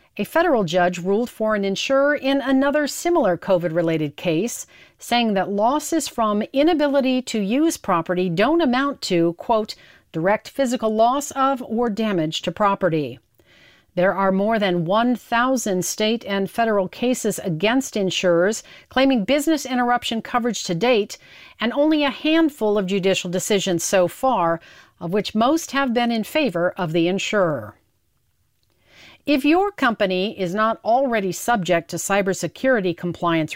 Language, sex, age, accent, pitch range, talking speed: English, female, 40-59, American, 180-260 Hz, 140 wpm